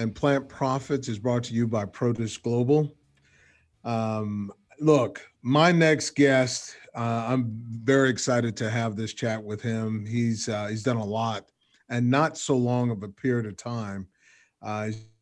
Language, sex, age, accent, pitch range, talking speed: English, male, 40-59, American, 115-135 Hz, 160 wpm